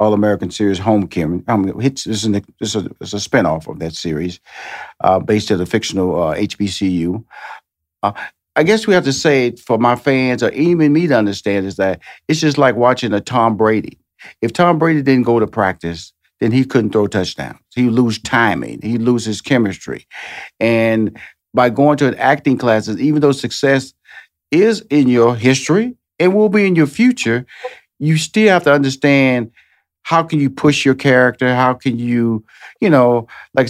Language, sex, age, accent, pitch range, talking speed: English, male, 50-69, American, 110-150 Hz, 180 wpm